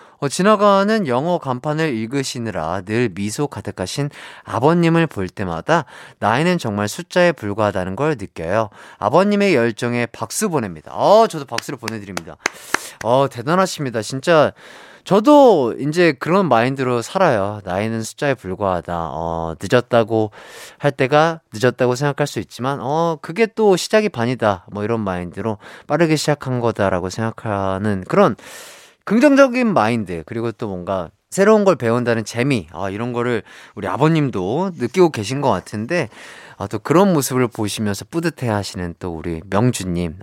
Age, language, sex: 30-49, Korean, male